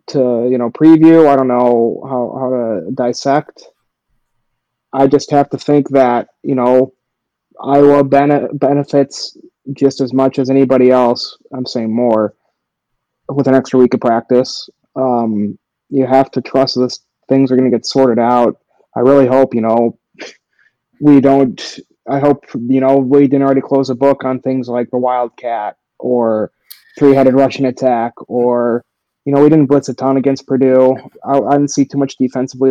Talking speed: 170 wpm